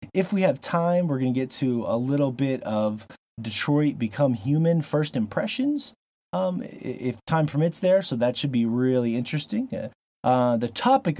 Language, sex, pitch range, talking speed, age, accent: English, male, 110-150 Hz, 170 wpm, 30-49, American